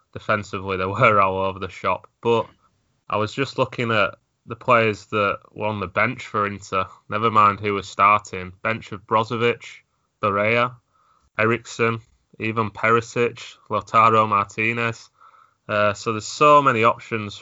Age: 20-39